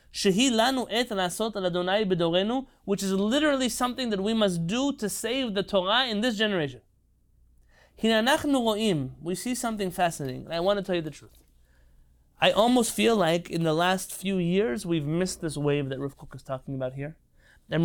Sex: male